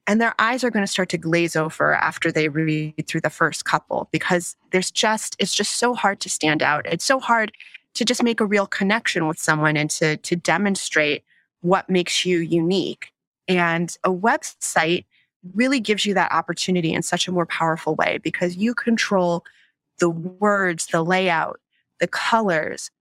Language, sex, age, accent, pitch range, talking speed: English, female, 30-49, American, 170-205 Hz, 180 wpm